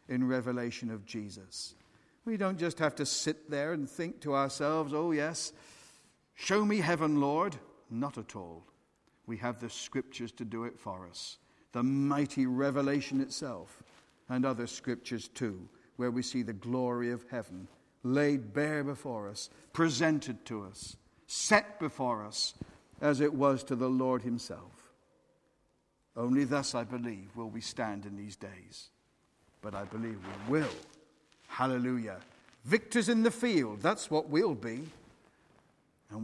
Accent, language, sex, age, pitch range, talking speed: British, English, male, 50-69, 115-150 Hz, 150 wpm